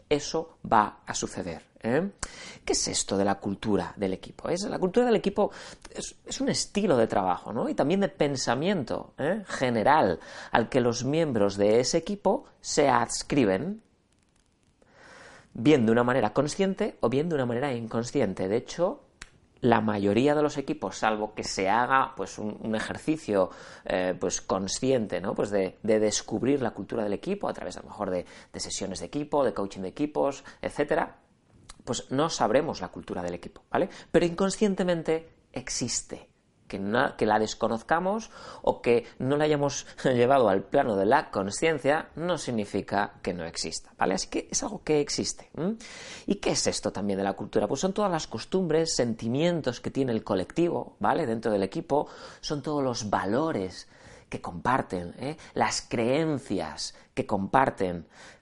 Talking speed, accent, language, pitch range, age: 170 wpm, Spanish, Spanish, 105-160 Hz, 30-49